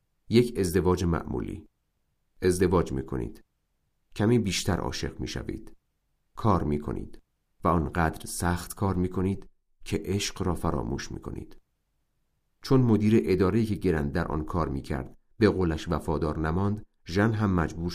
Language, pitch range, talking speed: Persian, 80-105 Hz, 125 wpm